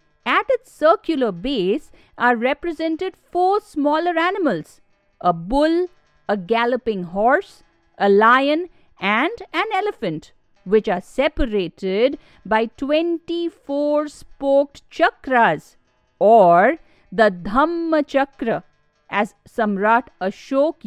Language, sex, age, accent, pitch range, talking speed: English, female, 50-69, Indian, 220-330 Hz, 95 wpm